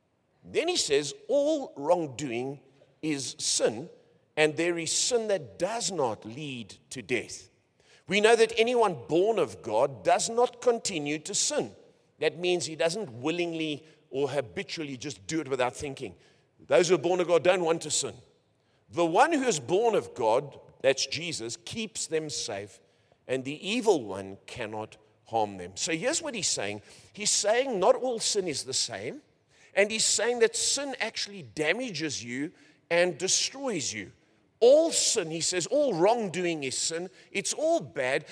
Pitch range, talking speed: 145-220 Hz, 165 wpm